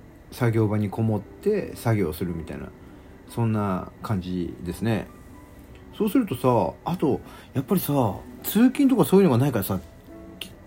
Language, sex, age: Japanese, male, 40-59